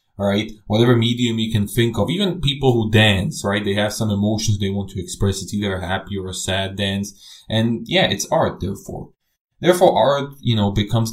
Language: English